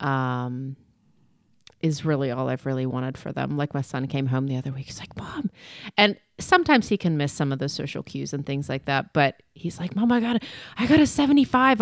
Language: English